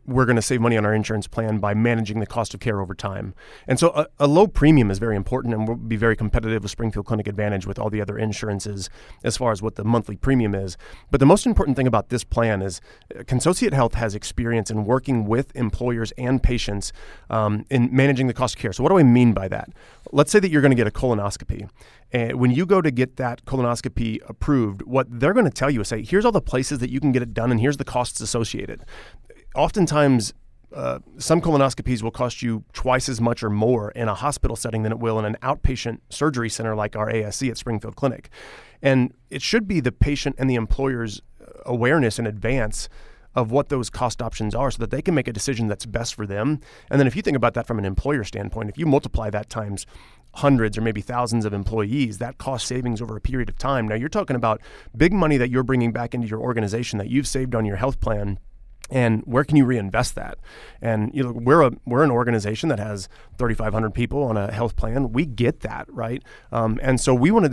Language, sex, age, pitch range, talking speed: English, male, 30-49, 110-135 Hz, 235 wpm